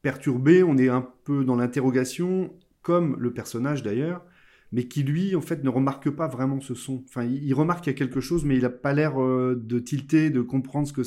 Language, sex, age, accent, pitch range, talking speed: French, male, 30-49, French, 115-140 Hz, 220 wpm